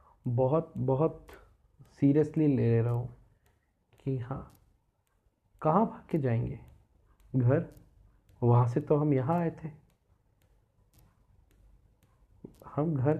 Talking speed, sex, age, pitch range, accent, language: 100 wpm, male, 40-59, 120-145 Hz, native, Hindi